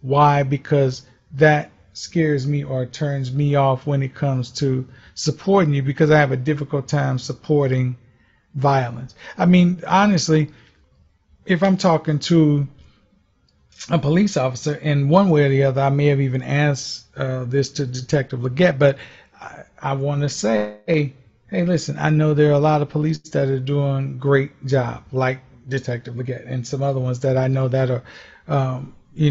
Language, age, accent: English, 40-59, American